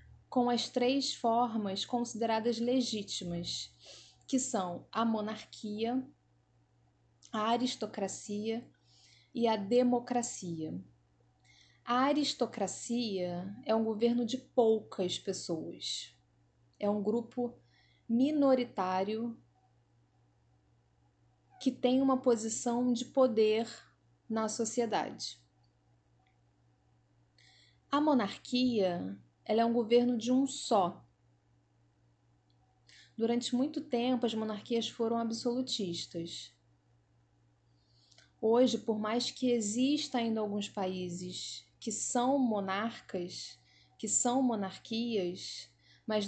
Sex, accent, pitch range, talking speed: female, Brazilian, 175-240 Hz, 85 wpm